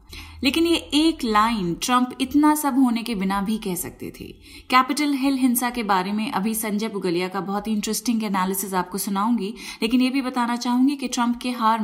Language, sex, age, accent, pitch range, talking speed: Hindi, female, 30-49, native, 195-255 Hz, 195 wpm